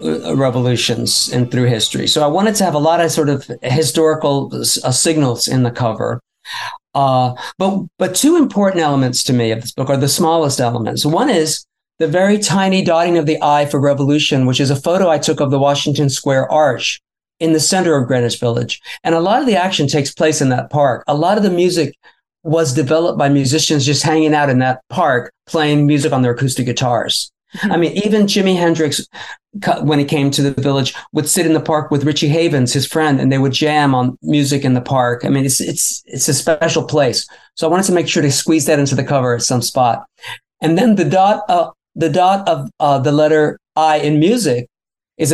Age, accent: 50-69, American